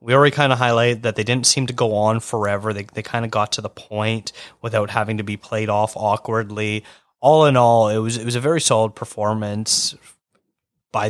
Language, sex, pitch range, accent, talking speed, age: English, male, 110-135 Hz, American, 215 wpm, 20-39